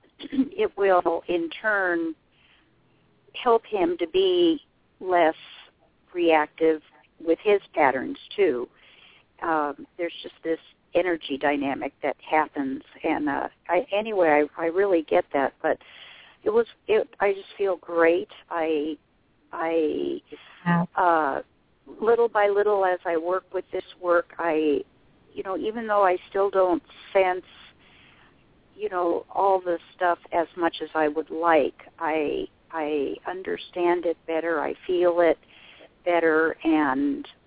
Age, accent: 50-69, American